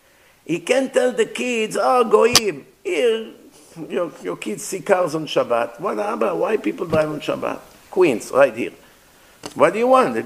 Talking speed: 175 wpm